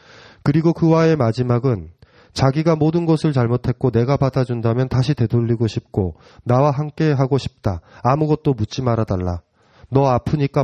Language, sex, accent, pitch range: Korean, male, native, 115-150 Hz